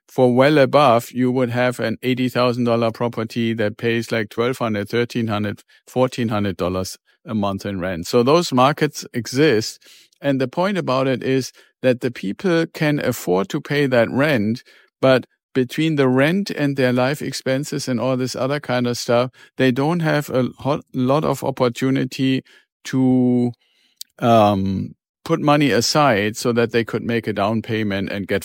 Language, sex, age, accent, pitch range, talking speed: English, male, 50-69, German, 115-135 Hz, 170 wpm